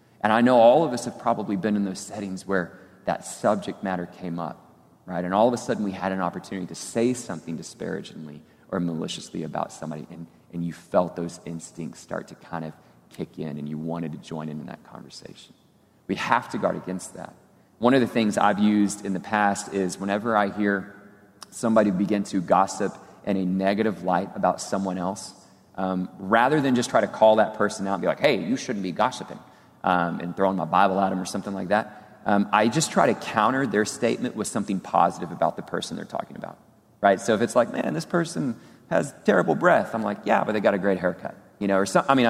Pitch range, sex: 90-105 Hz, male